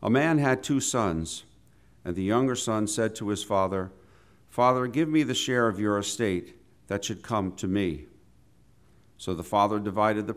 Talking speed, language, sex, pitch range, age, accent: 180 wpm, English, male, 100-120 Hz, 50-69, American